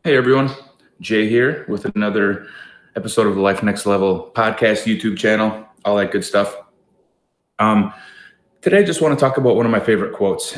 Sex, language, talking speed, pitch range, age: male, English, 180 wpm, 90-105 Hz, 20-39